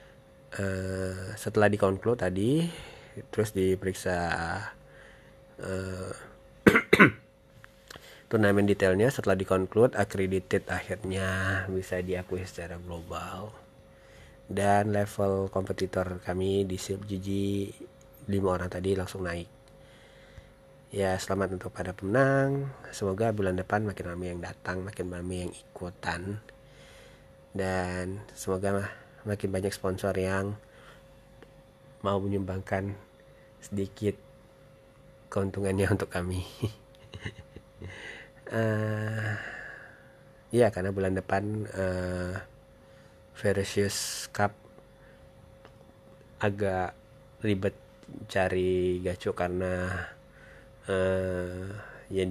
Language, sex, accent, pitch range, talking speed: Indonesian, male, native, 90-105 Hz, 85 wpm